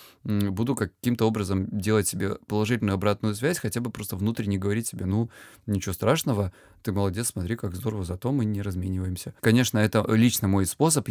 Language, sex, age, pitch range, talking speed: Russian, male, 20-39, 105-140 Hz, 165 wpm